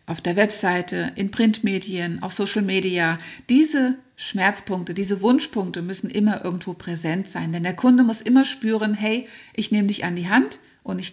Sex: female